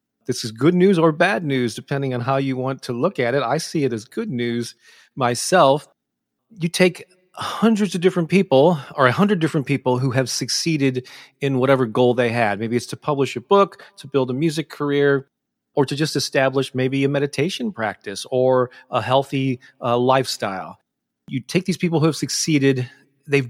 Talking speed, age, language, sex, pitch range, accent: 190 wpm, 30-49, English, male, 125-160 Hz, American